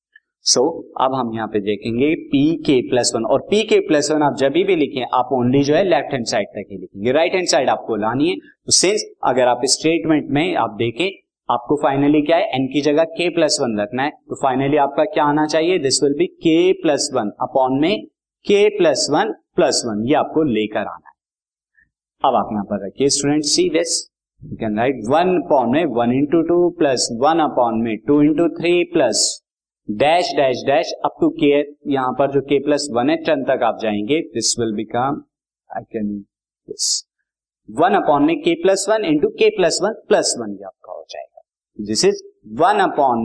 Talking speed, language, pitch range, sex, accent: 195 wpm, Hindi, 130-215 Hz, male, native